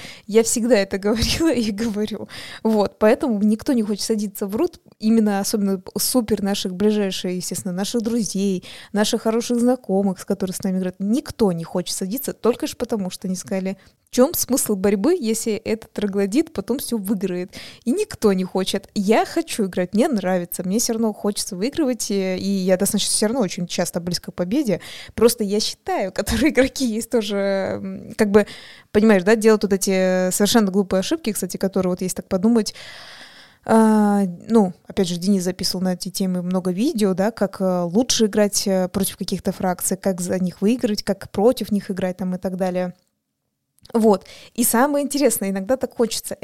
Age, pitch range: 20-39, 195-235 Hz